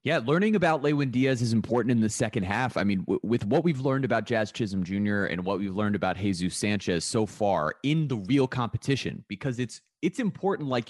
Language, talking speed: English, 220 wpm